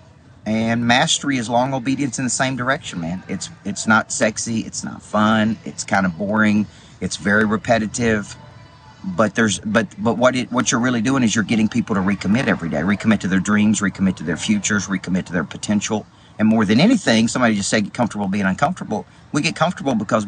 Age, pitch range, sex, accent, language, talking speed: 40-59, 100-120 Hz, male, American, English, 205 wpm